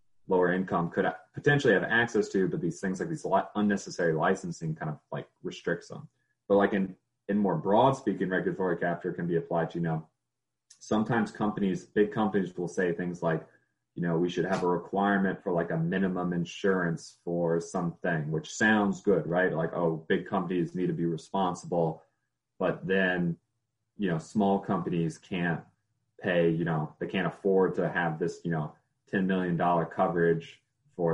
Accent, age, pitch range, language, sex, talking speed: American, 30-49, 85-100 Hz, English, male, 175 wpm